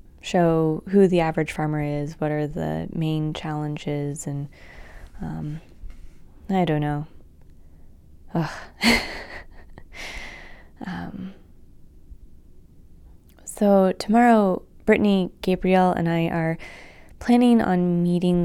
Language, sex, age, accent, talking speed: English, female, 20-39, American, 90 wpm